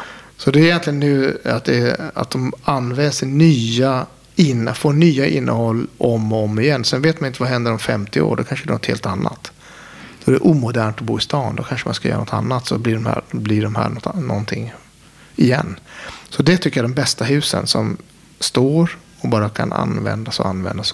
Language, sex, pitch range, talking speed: Swedish, male, 110-145 Hz, 205 wpm